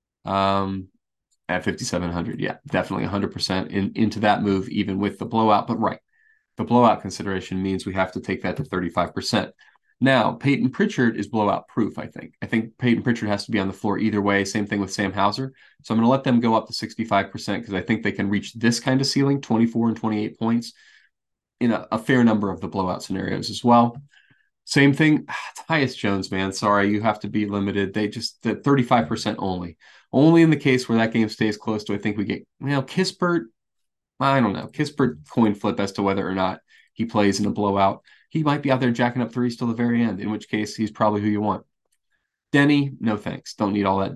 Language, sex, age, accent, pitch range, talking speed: English, male, 20-39, American, 100-125 Hz, 225 wpm